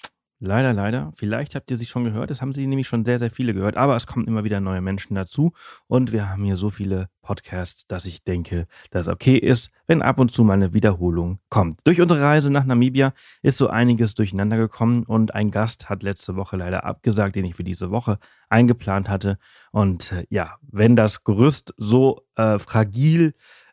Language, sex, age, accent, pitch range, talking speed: German, male, 30-49, German, 95-125 Hz, 200 wpm